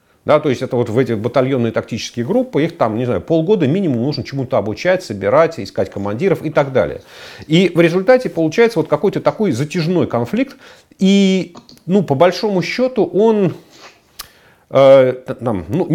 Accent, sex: native, male